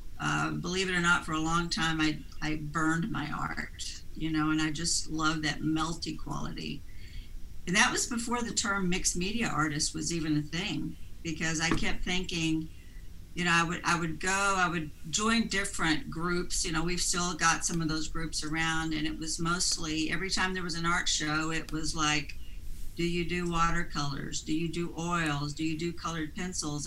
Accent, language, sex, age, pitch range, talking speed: American, English, female, 60-79, 155-200 Hz, 200 wpm